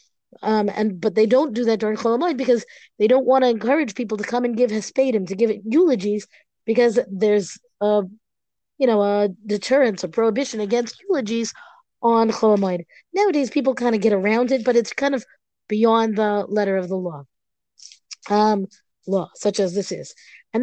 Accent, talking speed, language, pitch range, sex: American, 180 wpm, English, 210-260 Hz, female